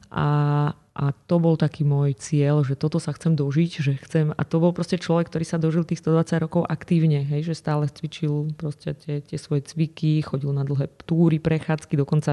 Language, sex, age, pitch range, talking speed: Slovak, female, 30-49, 145-165 Hz, 200 wpm